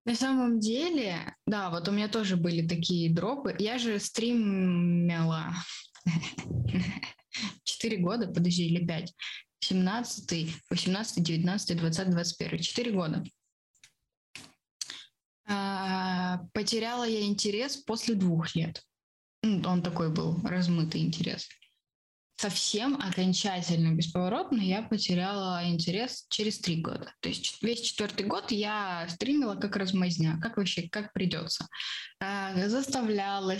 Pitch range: 175-215 Hz